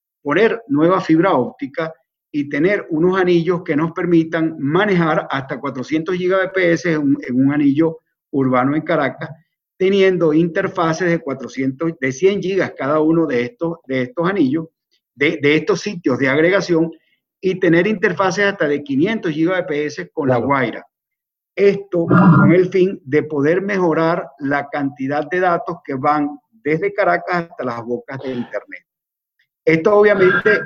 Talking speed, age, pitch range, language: 140 wpm, 50-69, 145-180 Hz, Spanish